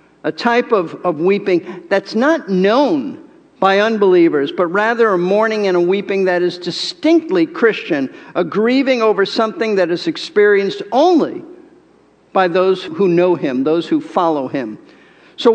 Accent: American